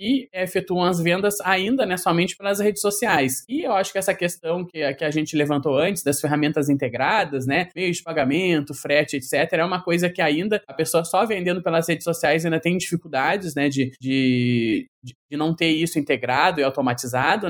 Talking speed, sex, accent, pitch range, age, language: 200 wpm, male, Brazilian, 155-200 Hz, 20-39, Portuguese